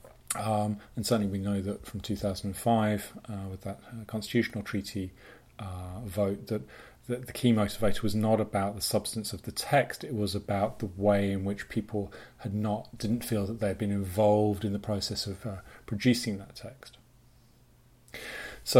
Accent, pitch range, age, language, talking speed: British, 100-115 Hz, 30-49, English, 170 wpm